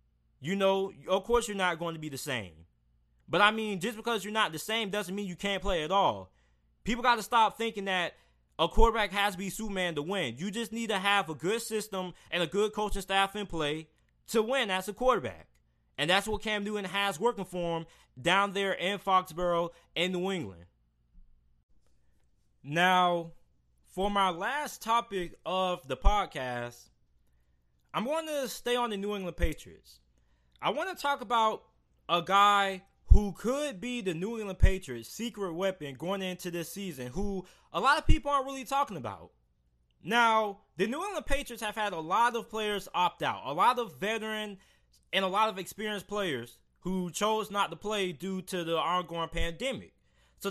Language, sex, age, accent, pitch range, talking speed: English, male, 20-39, American, 155-215 Hz, 185 wpm